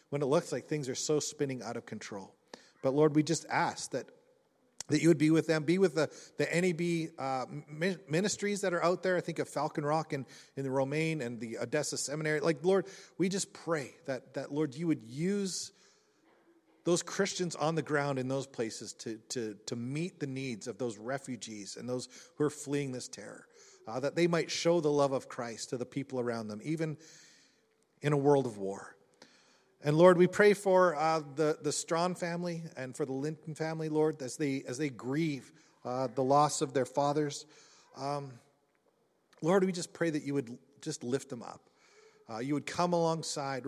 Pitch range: 130-165 Hz